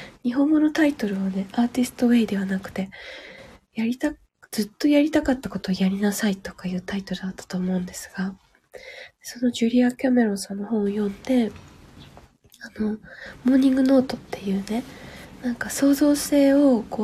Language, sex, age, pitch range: Japanese, female, 20-39, 200-250 Hz